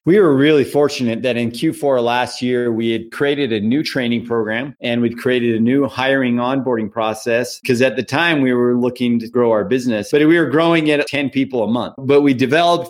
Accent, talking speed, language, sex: American, 220 wpm, English, male